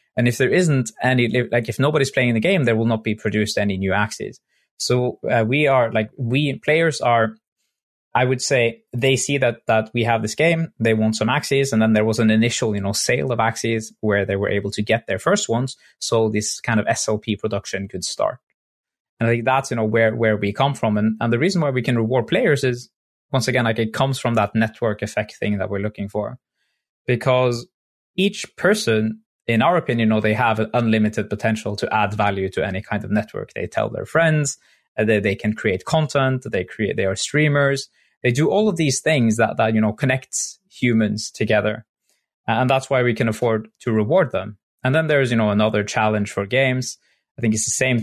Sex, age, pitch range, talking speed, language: male, 20-39, 110-135 Hz, 220 wpm, English